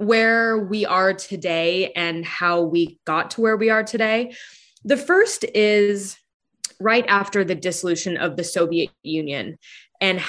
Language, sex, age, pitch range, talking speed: English, female, 20-39, 175-210 Hz, 145 wpm